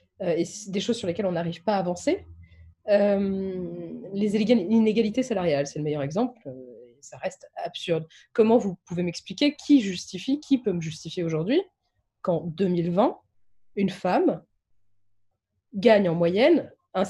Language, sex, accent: French, female, French